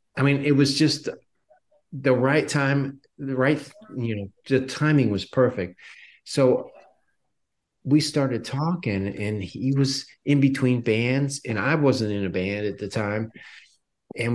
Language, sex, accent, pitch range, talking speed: English, male, American, 110-135 Hz, 150 wpm